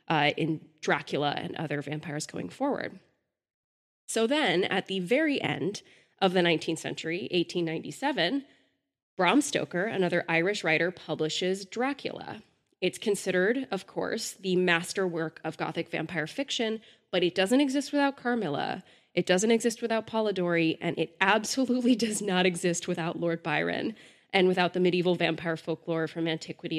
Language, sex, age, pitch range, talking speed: English, female, 20-39, 170-240 Hz, 145 wpm